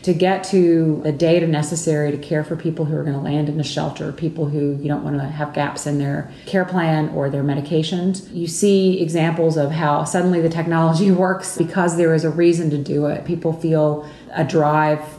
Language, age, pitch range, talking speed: English, 30-49, 150-170 Hz, 215 wpm